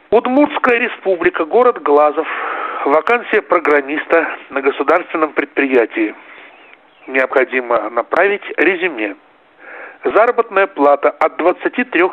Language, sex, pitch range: Russian, male, 135-195 Hz